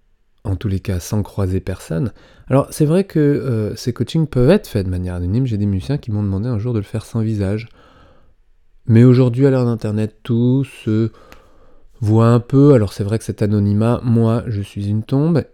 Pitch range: 105-140 Hz